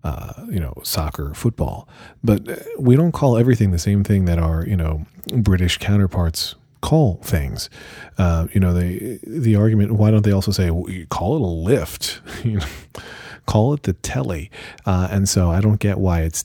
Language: English